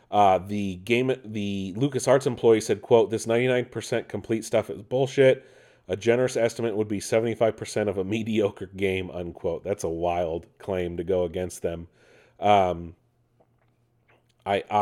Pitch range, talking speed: 95-125 Hz, 155 wpm